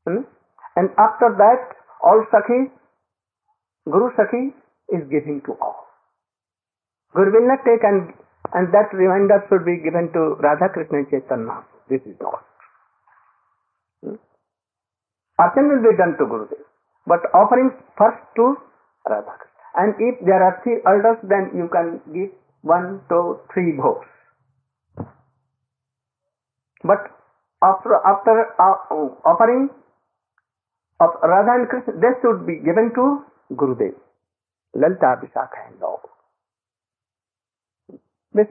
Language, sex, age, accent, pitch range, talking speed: English, male, 50-69, Indian, 145-230 Hz, 115 wpm